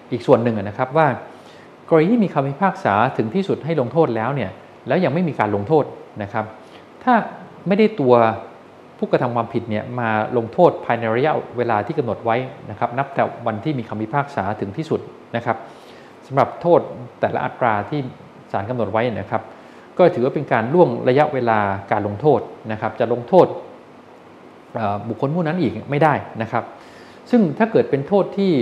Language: Thai